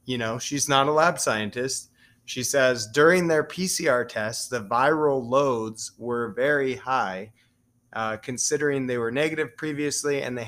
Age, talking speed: 30-49, 155 wpm